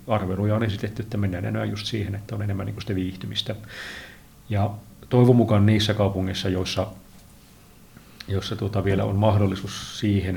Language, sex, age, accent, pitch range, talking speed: Finnish, male, 40-59, native, 100-110 Hz, 145 wpm